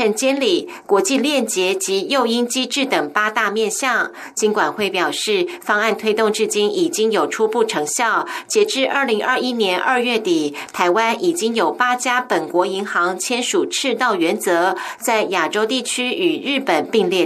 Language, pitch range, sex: Chinese, 195-270 Hz, female